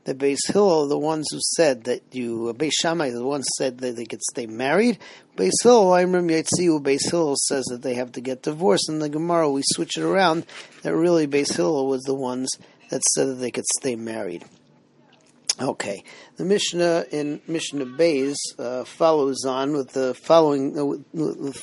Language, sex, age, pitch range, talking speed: English, male, 40-59, 135-165 Hz, 195 wpm